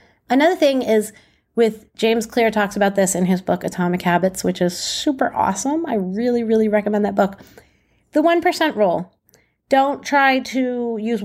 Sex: female